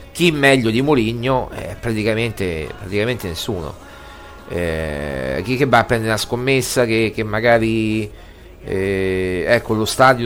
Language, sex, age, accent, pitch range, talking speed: Italian, male, 50-69, native, 95-125 Hz, 140 wpm